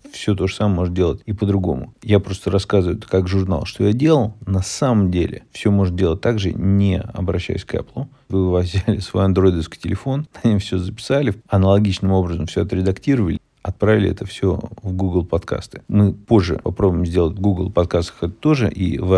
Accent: native